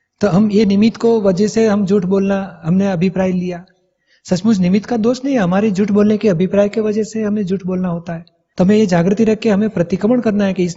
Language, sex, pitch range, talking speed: Hindi, male, 175-210 Hz, 245 wpm